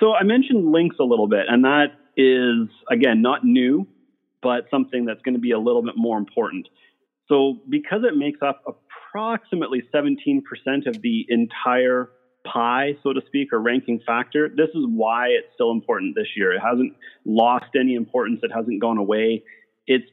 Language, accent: English, American